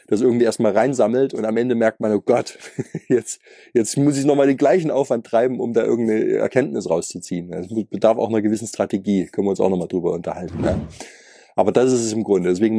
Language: German